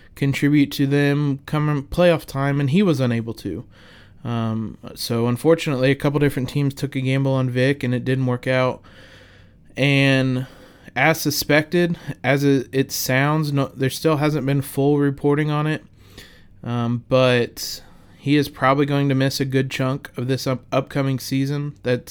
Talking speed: 155 wpm